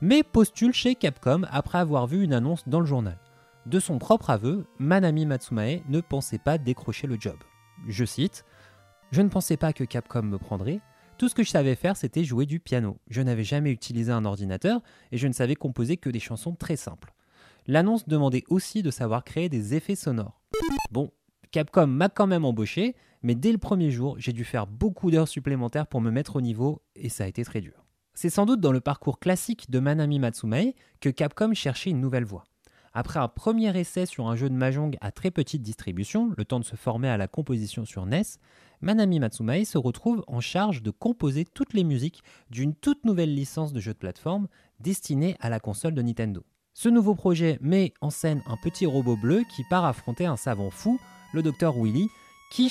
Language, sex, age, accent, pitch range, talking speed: French, male, 20-39, French, 120-180 Hz, 205 wpm